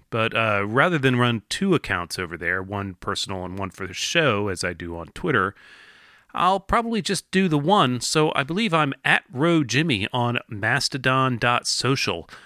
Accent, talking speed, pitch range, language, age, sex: American, 175 wpm, 95-135 Hz, English, 30-49, male